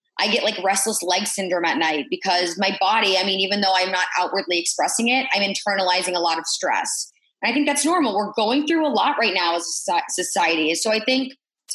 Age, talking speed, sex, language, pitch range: 20-39, 230 wpm, female, English, 190-260 Hz